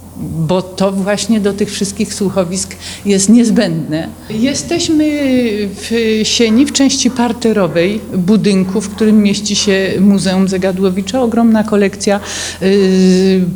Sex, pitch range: female, 180-205 Hz